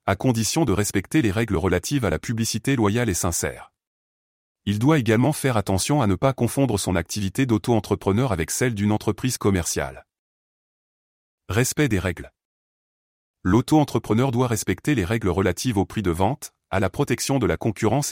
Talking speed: 160 wpm